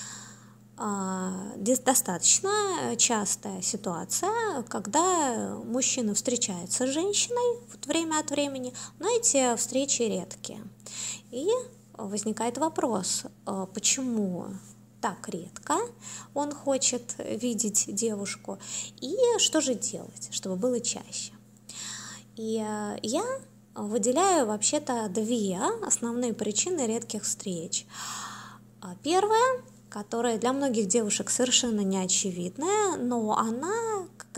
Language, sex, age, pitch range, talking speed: Russian, female, 20-39, 185-275 Hz, 90 wpm